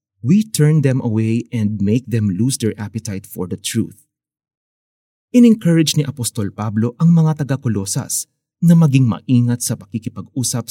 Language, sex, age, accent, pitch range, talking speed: Filipino, male, 30-49, native, 110-150 Hz, 140 wpm